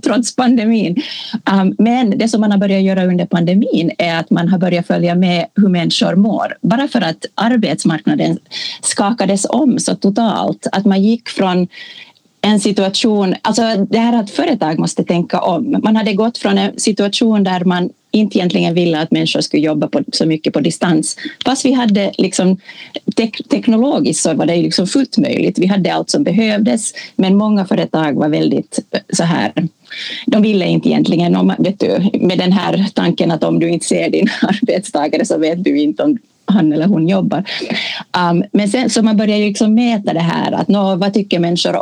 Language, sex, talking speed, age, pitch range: Swedish, female, 175 wpm, 30-49, 180-225 Hz